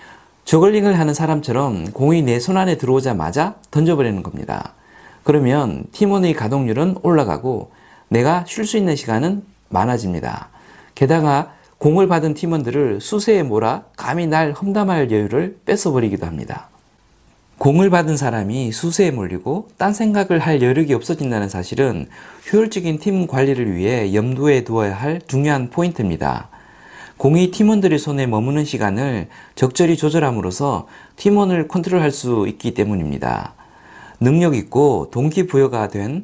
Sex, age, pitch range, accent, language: male, 40-59, 120-175 Hz, native, Korean